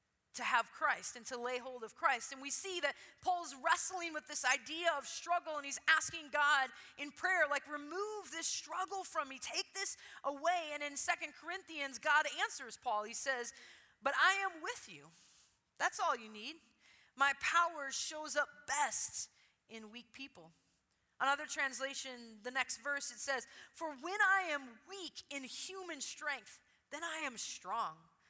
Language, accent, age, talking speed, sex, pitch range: English, American, 30-49, 170 wpm, female, 265-345 Hz